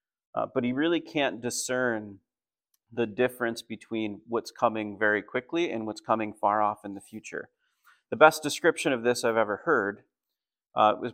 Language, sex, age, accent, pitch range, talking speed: English, male, 30-49, American, 105-130 Hz, 165 wpm